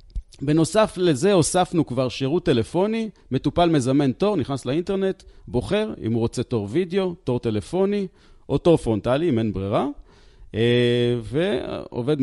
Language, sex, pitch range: Hebrew, male, 115-170 Hz